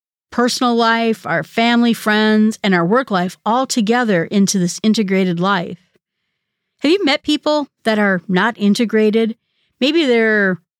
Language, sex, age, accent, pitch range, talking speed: English, female, 40-59, American, 190-245 Hz, 140 wpm